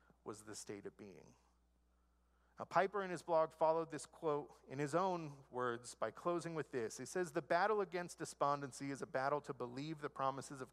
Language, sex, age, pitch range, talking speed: English, male, 40-59, 125-175 Hz, 195 wpm